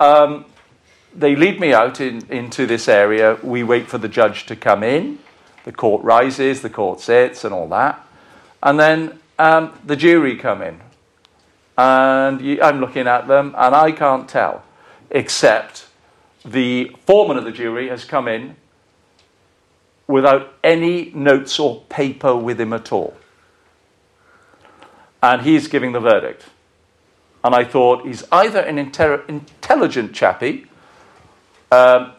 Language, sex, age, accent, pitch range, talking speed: English, male, 50-69, British, 115-140 Hz, 135 wpm